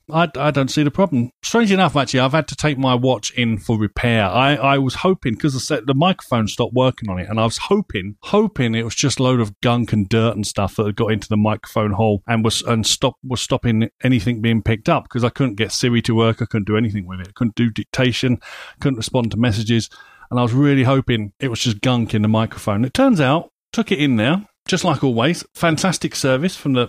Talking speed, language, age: 245 wpm, English, 40-59